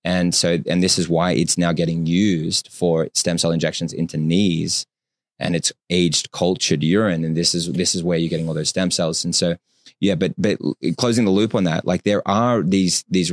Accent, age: Australian, 20-39